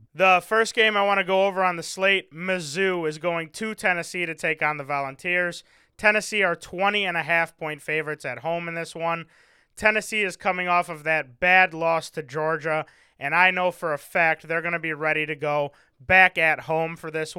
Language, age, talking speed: English, 20-39, 200 wpm